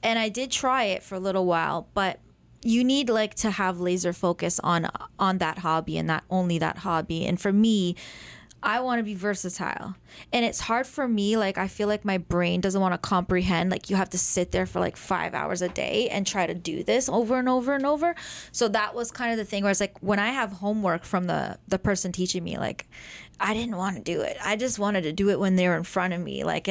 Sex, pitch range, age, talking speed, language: female, 175-210 Hz, 20-39, 250 wpm, English